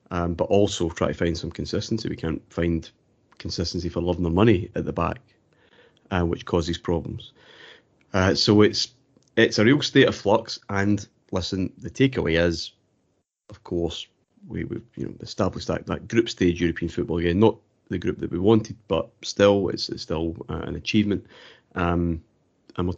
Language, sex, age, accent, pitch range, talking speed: English, male, 30-49, British, 85-105 Hz, 180 wpm